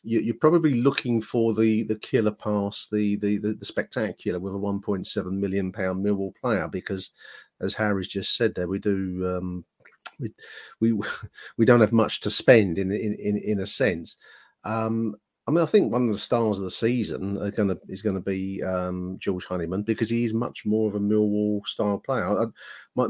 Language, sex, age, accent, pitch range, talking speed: English, male, 40-59, British, 95-110 Hz, 195 wpm